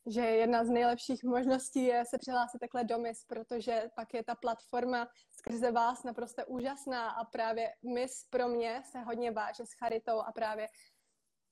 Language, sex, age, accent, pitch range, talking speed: Czech, female, 20-39, native, 230-260 Hz, 165 wpm